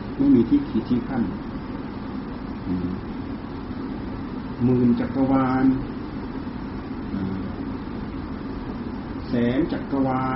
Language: Thai